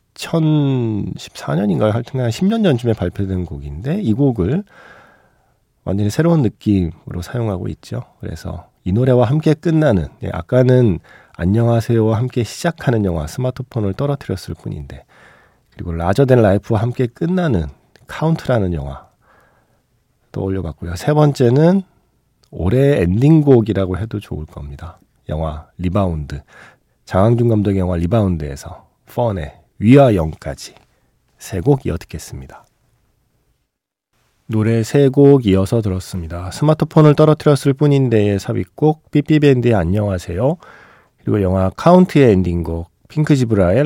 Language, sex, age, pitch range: Korean, male, 40-59, 90-135 Hz